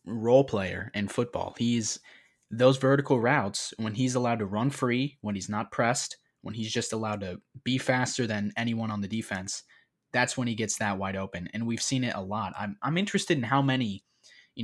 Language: English